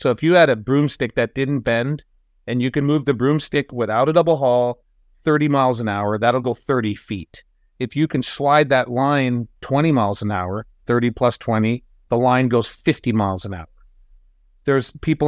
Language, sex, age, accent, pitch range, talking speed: English, male, 40-59, American, 105-140 Hz, 195 wpm